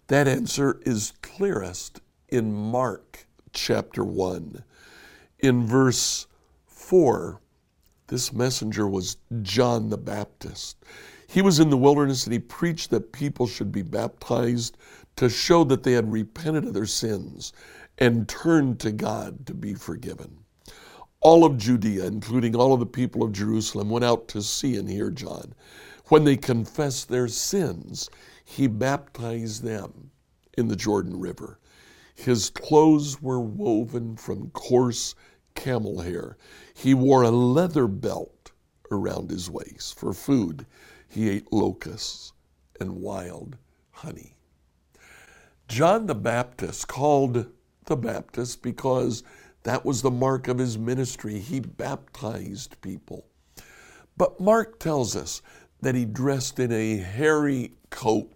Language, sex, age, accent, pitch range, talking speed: English, male, 60-79, American, 110-135 Hz, 130 wpm